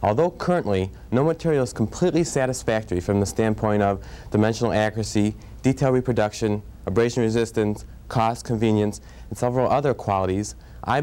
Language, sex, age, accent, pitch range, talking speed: English, male, 30-49, American, 105-135 Hz, 130 wpm